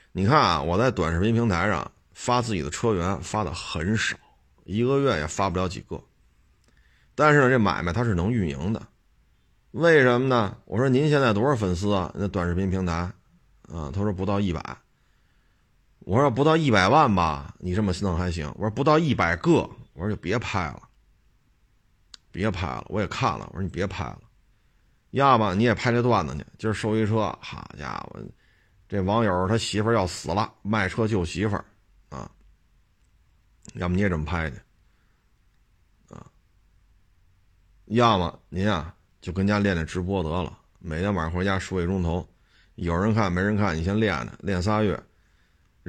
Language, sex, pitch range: Chinese, male, 90-110 Hz